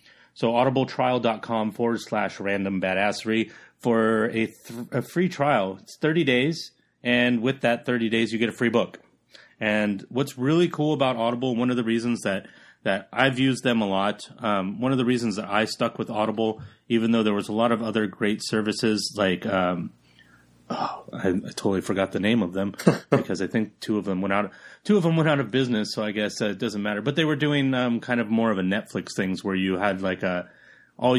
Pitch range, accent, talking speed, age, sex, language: 105-125 Hz, American, 220 wpm, 30-49, male, English